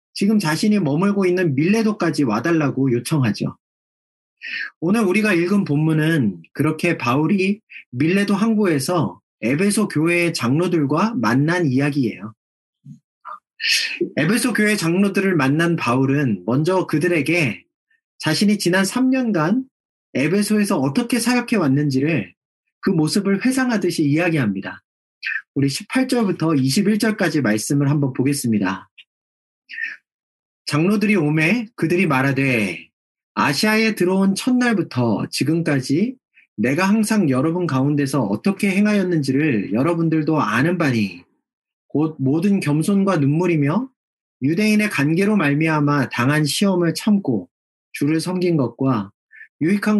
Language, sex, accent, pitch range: Korean, male, native, 140-200 Hz